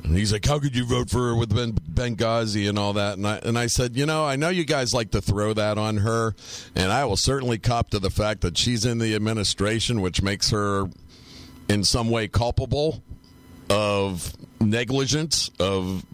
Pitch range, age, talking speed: 100-135 Hz, 50-69, 205 wpm